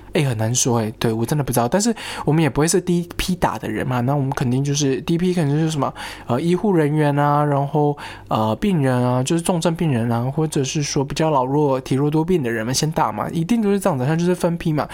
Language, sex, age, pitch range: Chinese, male, 20-39, 130-180 Hz